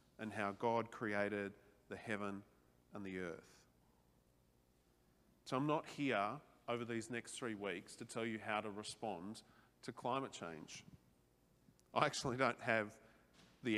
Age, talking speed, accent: 40-59, 140 wpm, Australian